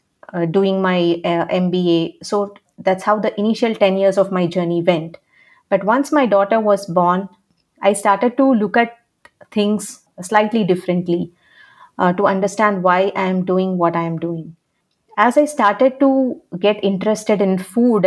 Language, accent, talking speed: English, Indian, 155 wpm